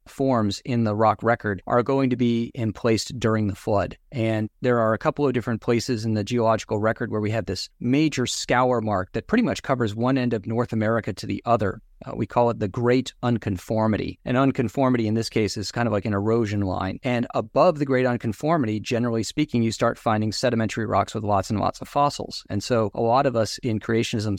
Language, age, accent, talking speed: English, 40-59, American, 220 wpm